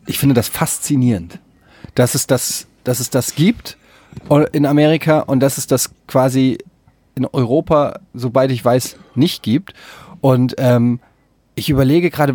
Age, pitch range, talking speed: 30-49, 125-155 Hz, 145 wpm